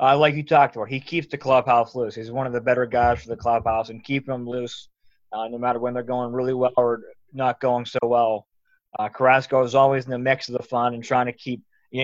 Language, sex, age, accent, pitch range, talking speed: English, male, 20-39, American, 120-135 Hz, 250 wpm